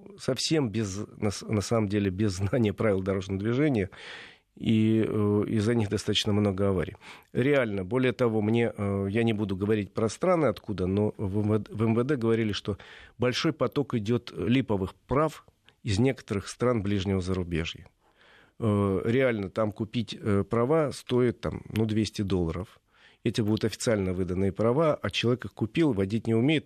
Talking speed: 145 wpm